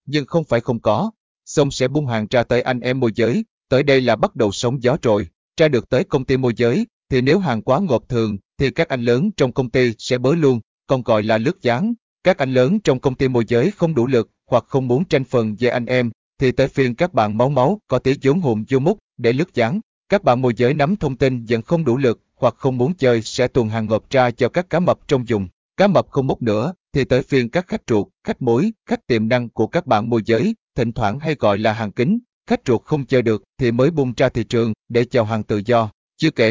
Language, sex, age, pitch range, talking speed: Vietnamese, male, 20-39, 115-140 Hz, 260 wpm